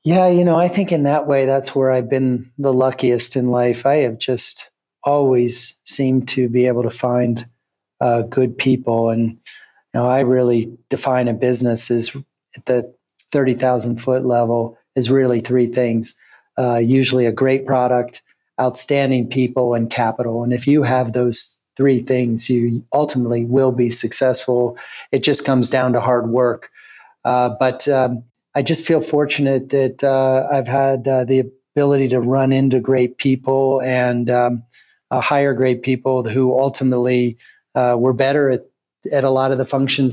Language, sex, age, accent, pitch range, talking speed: English, male, 40-59, American, 120-135 Hz, 165 wpm